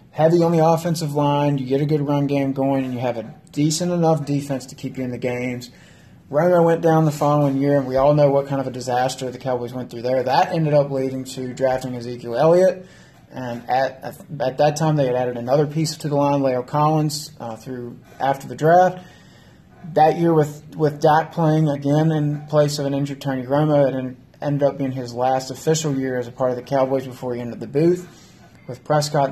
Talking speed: 220 wpm